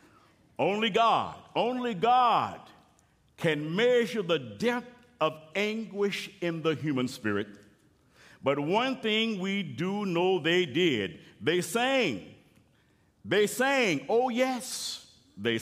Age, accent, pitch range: 60-79, American, 145-190 Hz